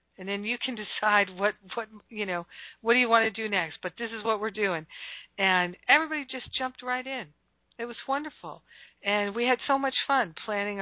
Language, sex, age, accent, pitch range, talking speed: English, female, 50-69, American, 180-230 Hz, 210 wpm